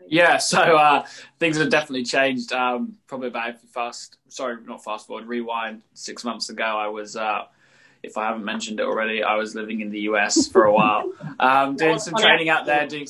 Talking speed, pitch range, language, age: 200 wpm, 120-150 Hz, English, 20-39